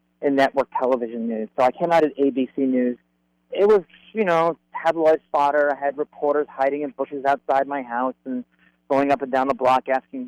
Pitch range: 125-155 Hz